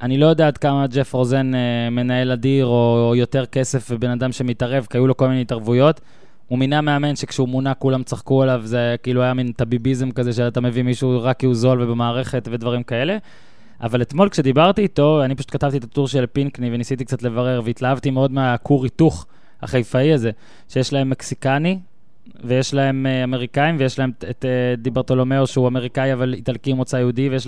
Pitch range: 125-145 Hz